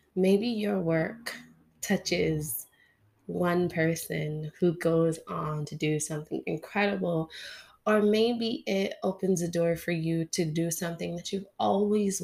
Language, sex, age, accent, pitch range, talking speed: English, female, 20-39, American, 160-215 Hz, 130 wpm